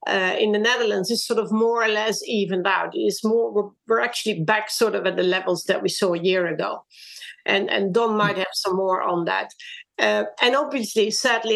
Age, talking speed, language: 50-69, 220 wpm, English